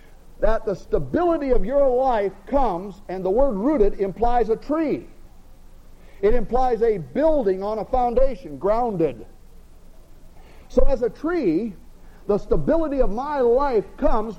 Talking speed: 135 wpm